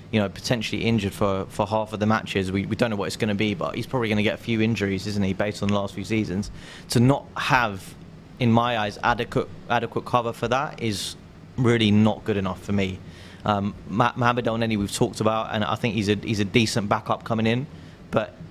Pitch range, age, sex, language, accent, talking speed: 100-120 Hz, 20-39, male, English, British, 230 wpm